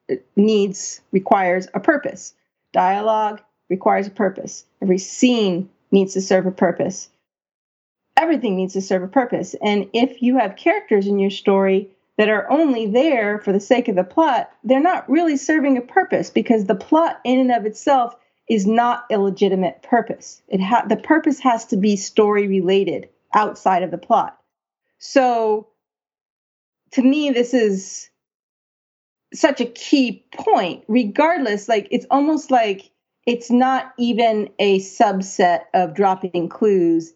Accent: American